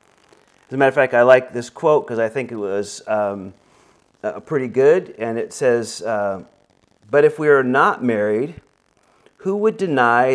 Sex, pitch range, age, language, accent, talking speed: male, 115-150 Hz, 40-59, English, American, 180 wpm